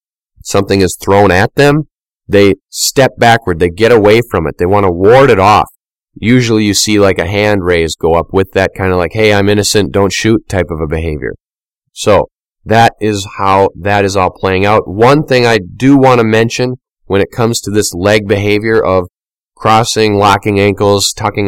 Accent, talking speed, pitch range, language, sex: American, 195 wpm, 95-110 Hz, English, male